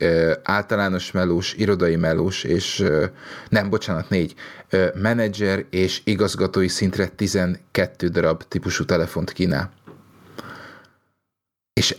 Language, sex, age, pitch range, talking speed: Hungarian, male, 30-49, 90-105 Hz, 90 wpm